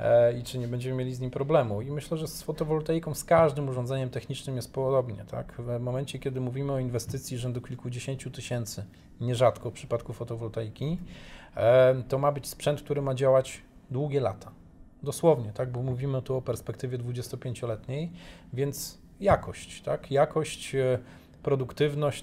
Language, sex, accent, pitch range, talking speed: Polish, male, native, 120-145 Hz, 150 wpm